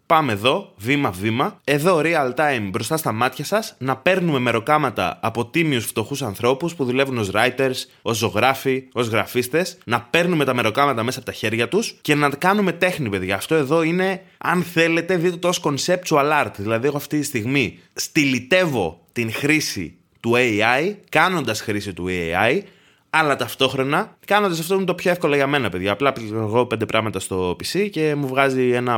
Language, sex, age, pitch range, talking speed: Greek, male, 20-39, 110-155 Hz, 170 wpm